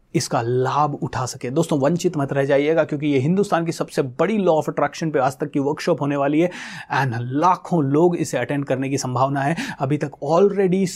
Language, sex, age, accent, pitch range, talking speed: Hindi, male, 30-49, native, 145-175 Hz, 210 wpm